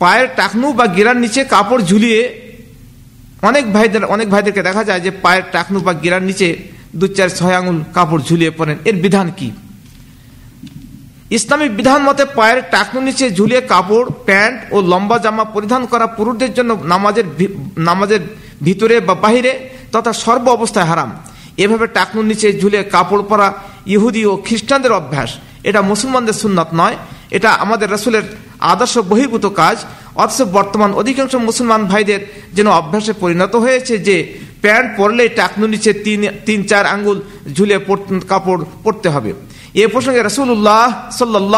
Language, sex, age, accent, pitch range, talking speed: Bengali, male, 50-69, native, 180-225 Hz, 50 wpm